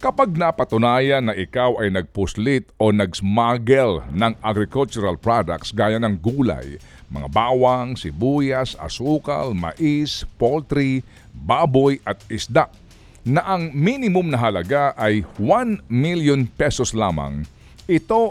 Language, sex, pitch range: Filipino, male, 105-175 Hz